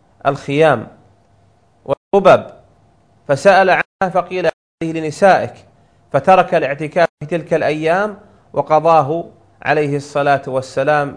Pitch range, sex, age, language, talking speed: 130-170 Hz, male, 40-59, Arabic, 80 wpm